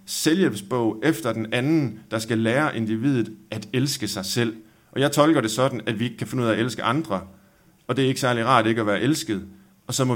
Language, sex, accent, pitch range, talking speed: Danish, male, native, 110-155 Hz, 235 wpm